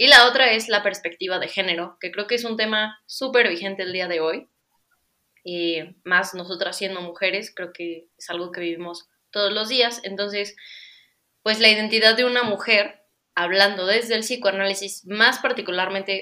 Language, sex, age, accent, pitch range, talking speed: Spanish, female, 20-39, Mexican, 180-225 Hz, 175 wpm